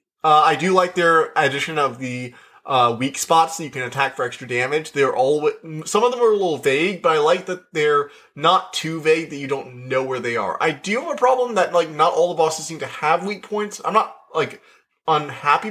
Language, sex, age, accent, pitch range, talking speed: English, male, 20-39, American, 125-160 Hz, 235 wpm